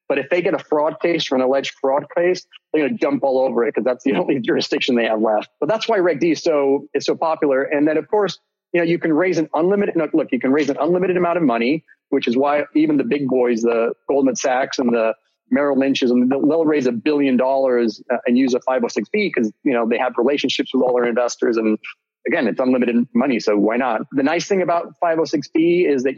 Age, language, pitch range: 30-49, English, 125-165 Hz